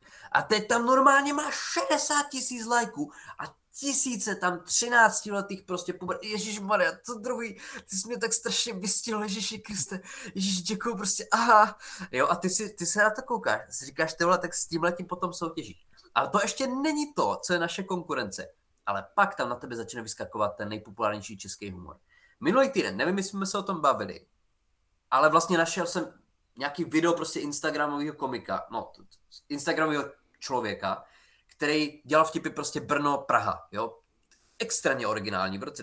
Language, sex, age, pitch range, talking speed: Czech, male, 20-39, 130-210 Hz, 165 wpm